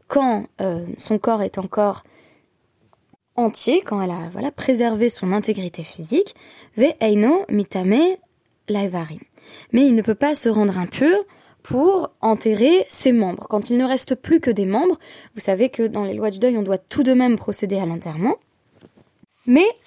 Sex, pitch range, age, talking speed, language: female, 200-270 Hz, 20-39, 165 wpm, French